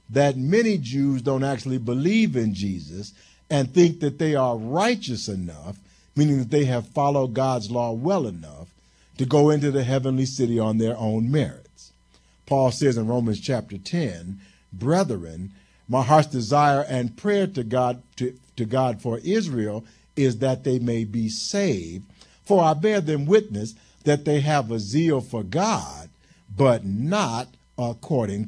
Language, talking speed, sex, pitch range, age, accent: English, 150 wpm, male, 110-155 Hz, 50-69, American